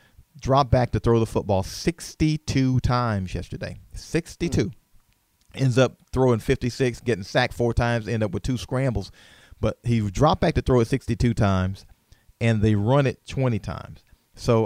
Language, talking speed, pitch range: English, 160 wpm, 110-130 Hz